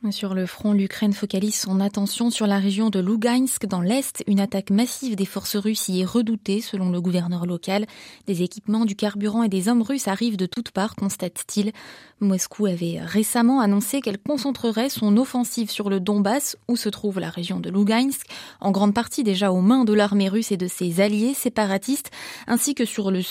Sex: female